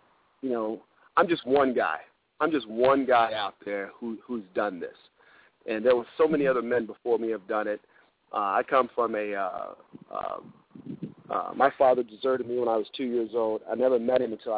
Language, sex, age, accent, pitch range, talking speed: English, male, 40-59, American, 115-140 Hz, 210 wpm